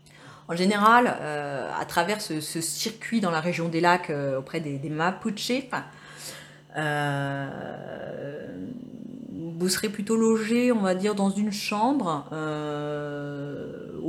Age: 30-49